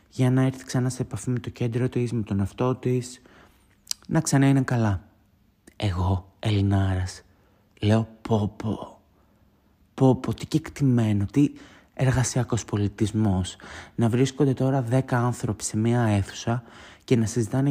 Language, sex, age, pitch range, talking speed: Greek, male, 20-39, 95-125 Hz, 135 wpm